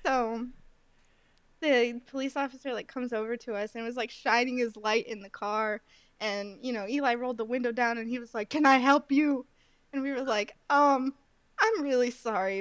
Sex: female